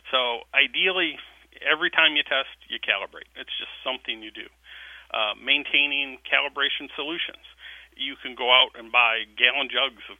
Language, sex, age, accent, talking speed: English, male, 40-59, American, 155 wpm